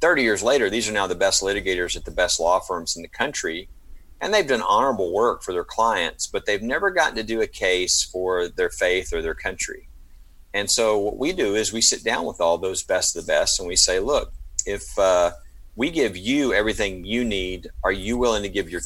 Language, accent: English, American